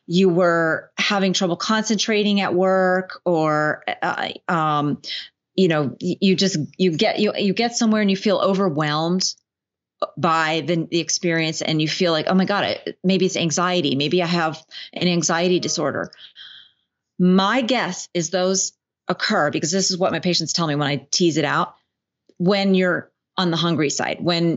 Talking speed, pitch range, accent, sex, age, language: 170 wpm, 165-210 Hz, American, female, 30-49, English